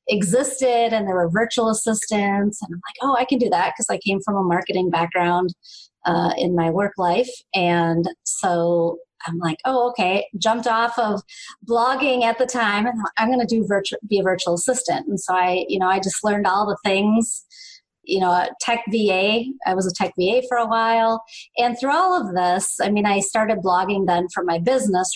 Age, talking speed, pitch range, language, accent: 30-49, 205 wpm, 185-230 Hz, English, American